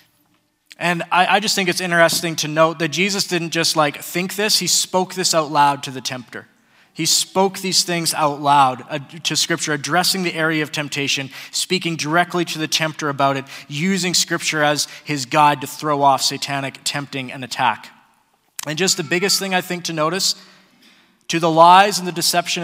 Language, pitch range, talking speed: English, 140-175 Hz, 190 wpm